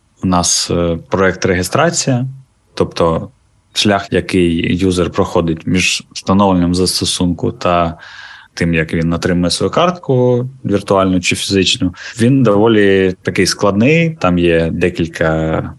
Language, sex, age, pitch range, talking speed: Ukrainian, male, 20-39, 90-110 Hz, 110 wpm